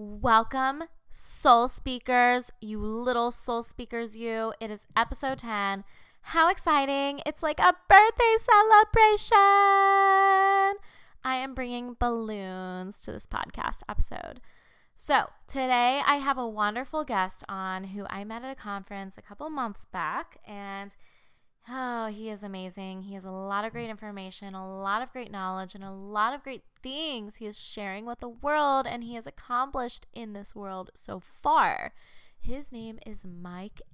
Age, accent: 10-29, American